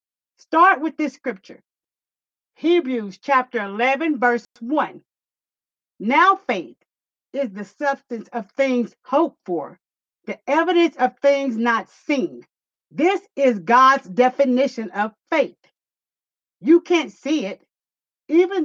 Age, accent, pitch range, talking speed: 50-69, American, 235-310 Hz, 115 wpm